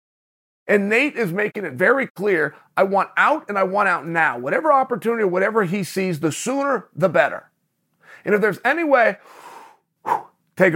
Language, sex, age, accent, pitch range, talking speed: English, male, 40-59, American, 170-210 Hz, 165 wpm